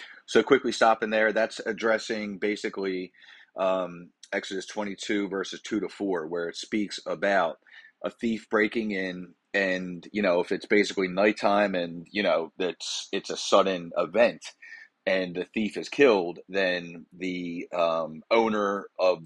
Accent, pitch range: American, 90-110 Hz